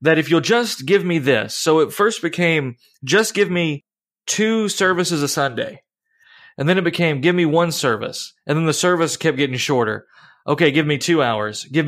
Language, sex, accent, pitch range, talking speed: English, male, American, 130-160 Hz, 195 wpm